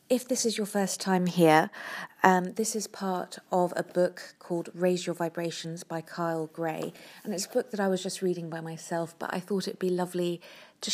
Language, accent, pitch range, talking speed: English, British, 165-185 Hz, 215 wpm